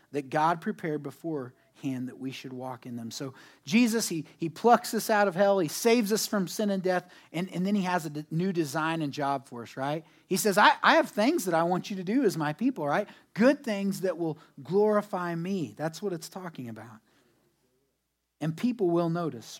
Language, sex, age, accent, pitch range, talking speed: English, male, 30-49, American, 150-210 Hz, 215 wpm